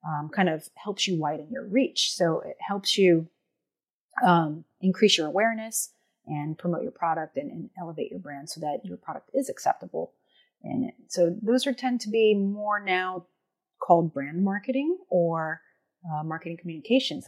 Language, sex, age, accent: English, female, 30-49, American